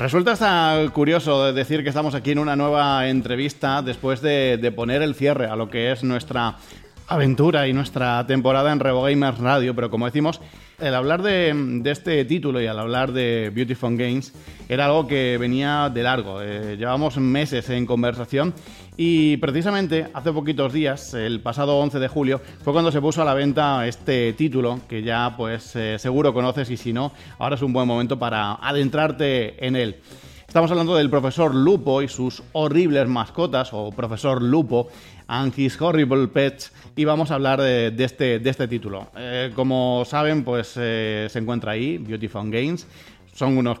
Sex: male